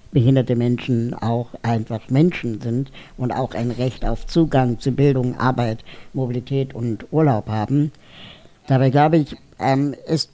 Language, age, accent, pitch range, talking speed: German, 60-79, German, 120-135 Hz, 135 wpm